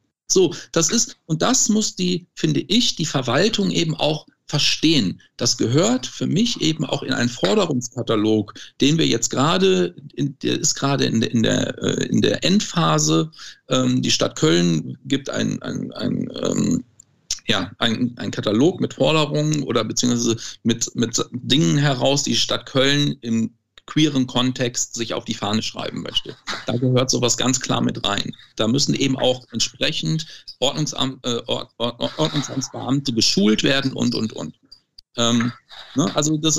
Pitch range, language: 125-165 Hz, German